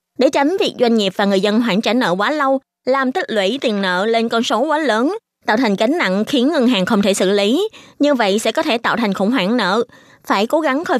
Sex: female